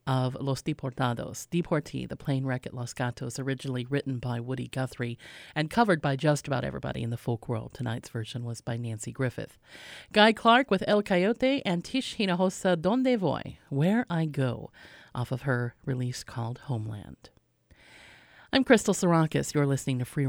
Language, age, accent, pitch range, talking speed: English, 40-59, American, 130-175 Hz, 170 wpm